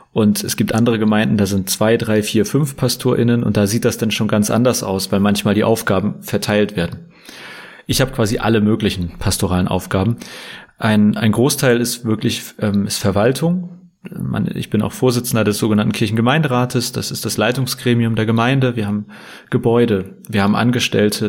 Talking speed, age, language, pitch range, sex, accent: 175 wpm, 30-49, German, 105-125 Hz, male, German